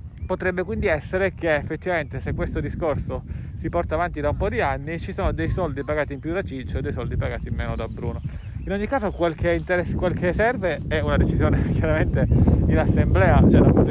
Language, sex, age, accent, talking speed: Italian, male, 40-59, native, 215 wpm